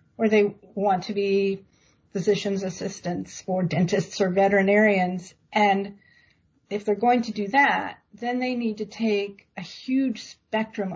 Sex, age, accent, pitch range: female, 50-69, American, 180-220 Hz